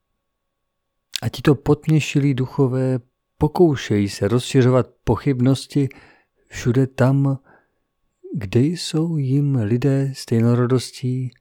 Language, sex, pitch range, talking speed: Czech, male, 115-140 Hz, 80 wpm